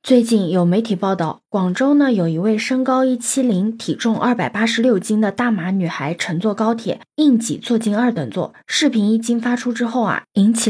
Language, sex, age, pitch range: Chinese, female, 20-39, 185-240 Hz